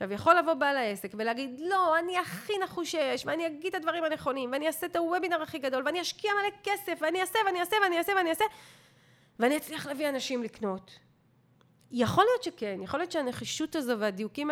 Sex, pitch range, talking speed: female, 215-340 Hz, 190 wpm